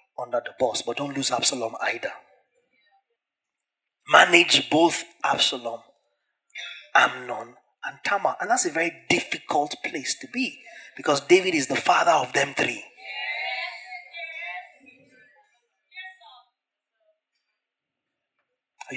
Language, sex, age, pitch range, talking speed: English, male, 30-49, 215-335 Hz, 100 wpm